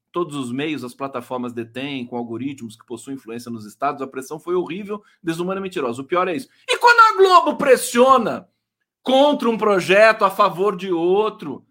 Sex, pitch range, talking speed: male, 145-240 Hz, 185 wpm